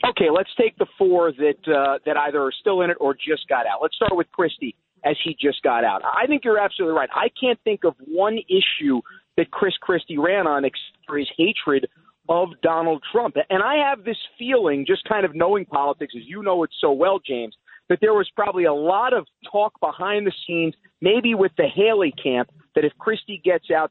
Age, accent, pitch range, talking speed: 40-59, American, 150-210 Hz, 220 wpm